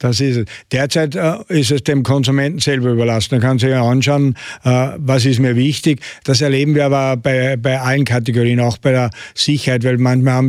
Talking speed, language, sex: 205 wpm, German, male